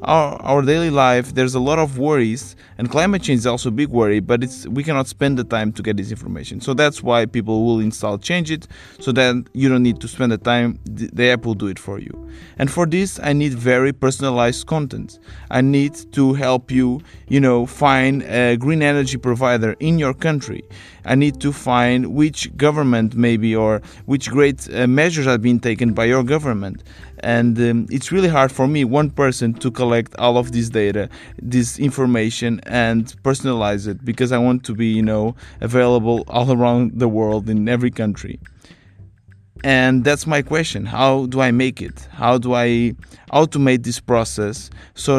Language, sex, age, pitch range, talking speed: English, male, 20-39, 115-135 Hz, 190 wpm